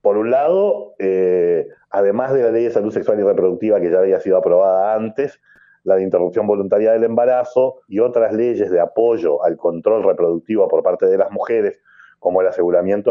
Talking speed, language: 190 wpm, English